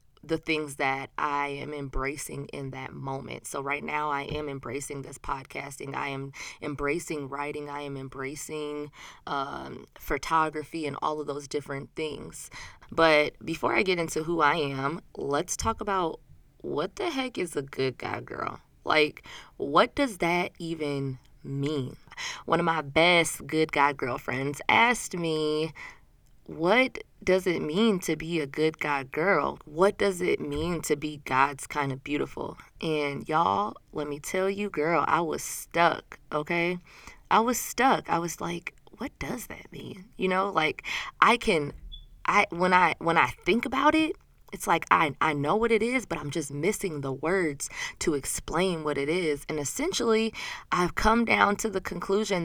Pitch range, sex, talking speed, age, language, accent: 145-180 Hz, female, 170 wpm, 20-39, English, American